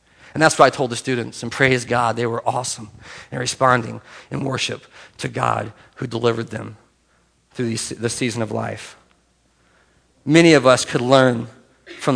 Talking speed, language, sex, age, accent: 165 wpm, English, male, 40-59, American